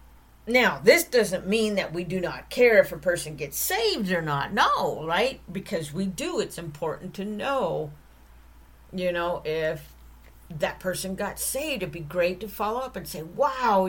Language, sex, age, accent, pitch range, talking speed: English, female, 50-69, American, 150-215 Hz, 175 wpm